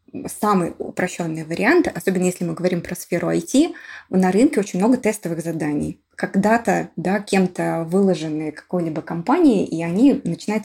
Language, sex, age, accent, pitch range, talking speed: Russian, female, 20-39, native, 170-220 Hz, 140 wpm